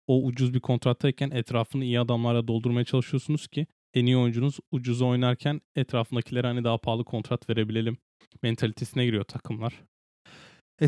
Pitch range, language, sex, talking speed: 115-130 Hz, Turkish, male, 140 wpm